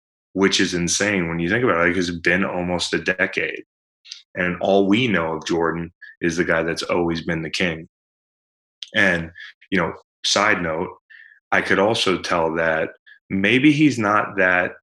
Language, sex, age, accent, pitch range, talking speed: English, male, 20-39, American, 85-95 Hz, 175 wpm